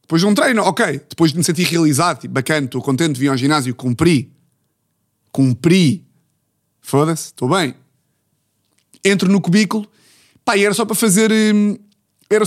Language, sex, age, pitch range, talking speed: Portuguese, male, 20-39, 150-215 Hz, 150 wpm